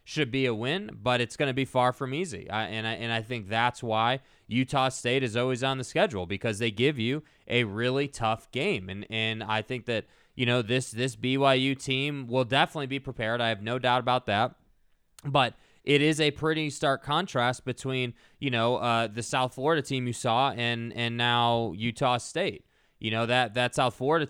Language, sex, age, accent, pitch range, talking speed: English, male, 20-39, American, 120-135 Hz, 205 wpm